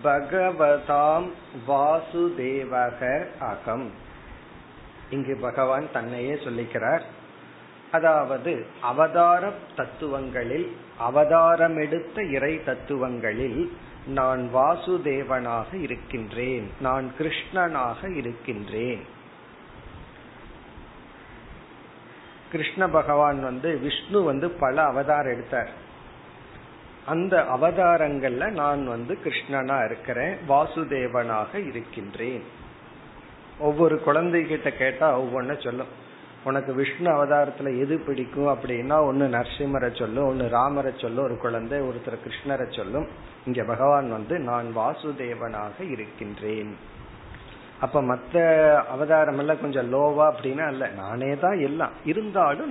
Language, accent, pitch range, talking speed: Tamil, native, 125-155 Hz, 85 wpm